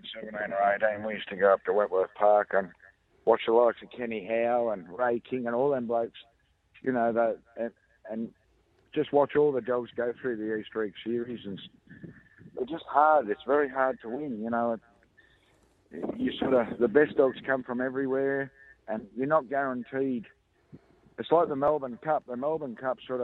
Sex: male